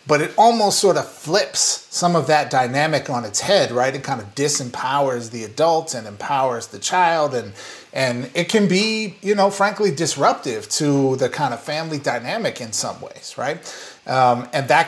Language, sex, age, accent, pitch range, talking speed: English, male, 30-49, American, 130-175 Hz, 185 wpm